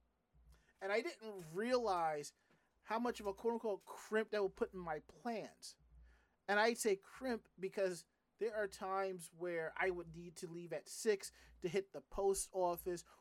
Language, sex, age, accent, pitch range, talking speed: English, male, 30-49, American, 165-220 Hz, 175 wpm